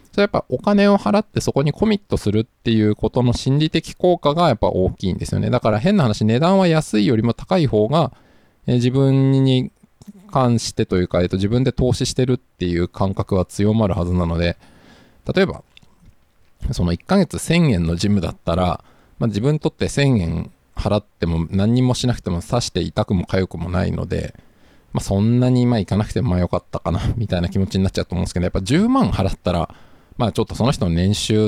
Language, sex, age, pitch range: Japanese, male, 20-39, 90-125 Hz